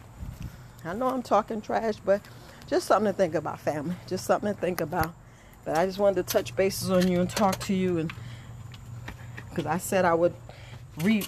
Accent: American